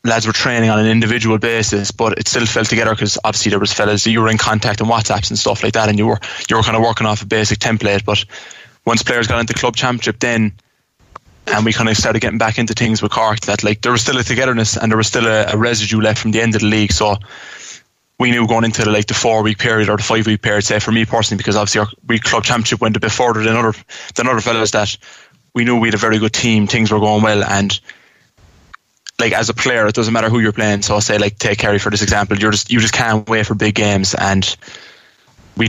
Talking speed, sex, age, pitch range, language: 265 wpm, male, 20-39, 105-115 Hz, English